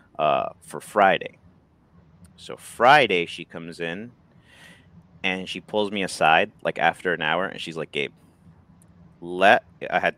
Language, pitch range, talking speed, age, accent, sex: English, 90-115 Hz, 140 wpm, 30-49, American, male